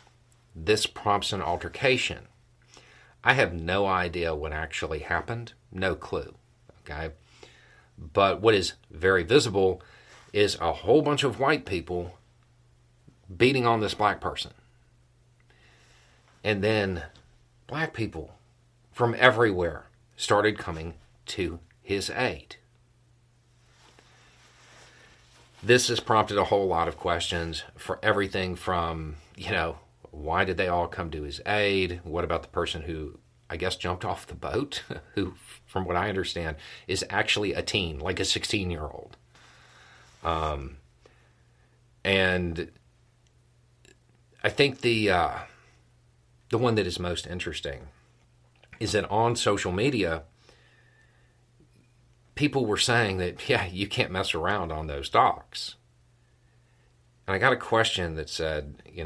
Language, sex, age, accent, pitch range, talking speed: English, male, 40-59, American, 85-120 Hz, 125 wpm